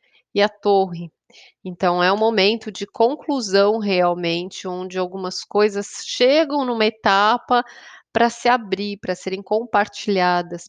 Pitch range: 185-225 Hz